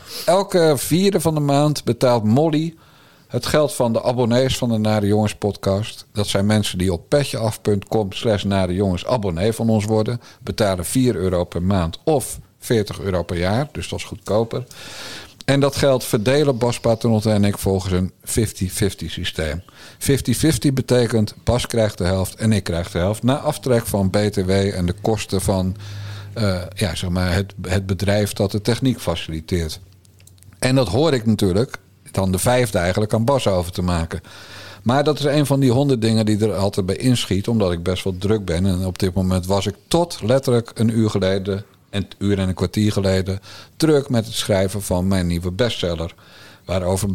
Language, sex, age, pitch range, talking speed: Dutch, male, 50-69, 95-125 Hz, 185 wpm